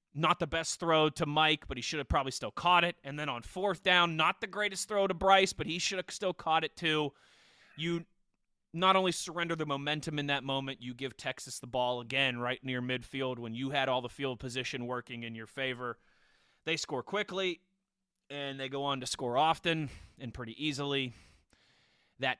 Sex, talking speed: male, 205 wpm